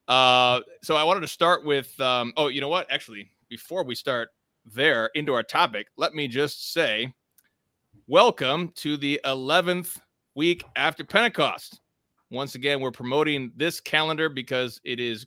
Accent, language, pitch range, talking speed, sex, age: American, English, 120-160 Hz, 155 wpm, male, 30-49